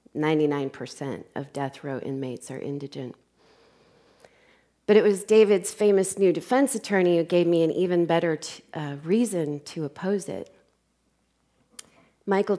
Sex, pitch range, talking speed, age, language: female, 145-175 Hz, 125 wpm, 30-49, English